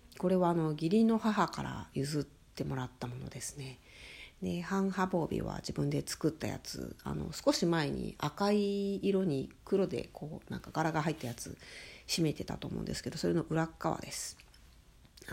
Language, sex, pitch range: Japanese, female, 110-180 Hz